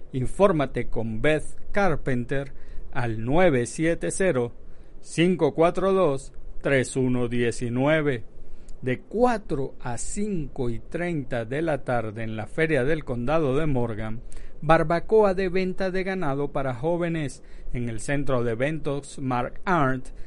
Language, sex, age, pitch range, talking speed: Spanish, male, 50-69, 125-175 Hz, 105 wpm